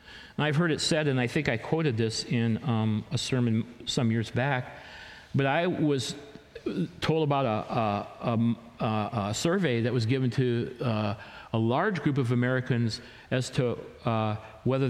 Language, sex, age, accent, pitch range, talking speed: English, male, 50-69, American, 110-150 Hz, 165 wpm